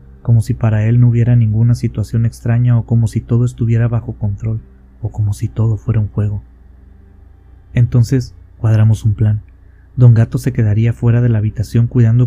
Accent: Mexican